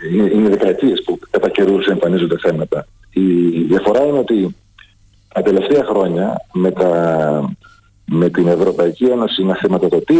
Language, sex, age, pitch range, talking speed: Greek, male, 40-59, 100-160 Hz, 135 wpm